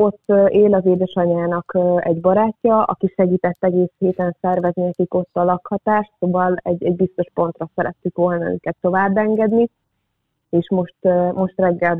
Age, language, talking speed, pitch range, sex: 30-49, Hungarian, 140 wpm, 170-195 Hz, female